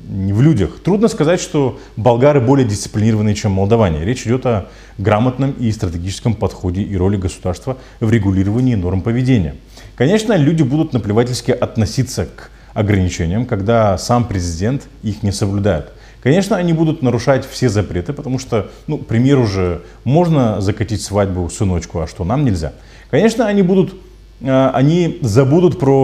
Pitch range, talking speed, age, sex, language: 105-135 Hz, 145 wpm, 30-49, male, Russian